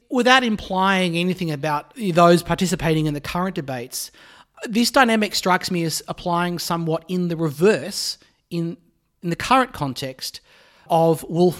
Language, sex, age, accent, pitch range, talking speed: English, male, 30-49, Australian, 140-170 Hz, 140 wpm